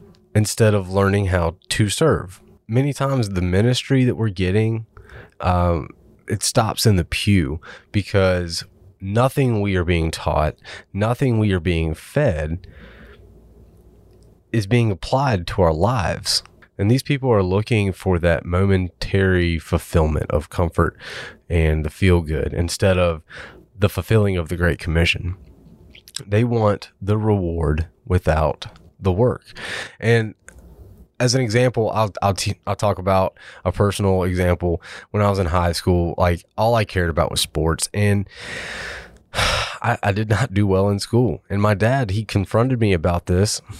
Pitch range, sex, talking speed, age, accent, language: 90-115 Hz, male, 150 wpm, 30-49, American, English